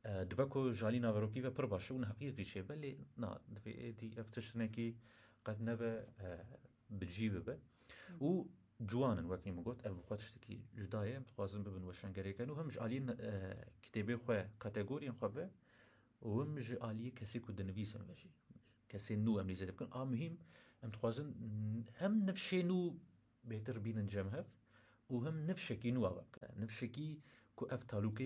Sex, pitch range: male, 105-125 Hz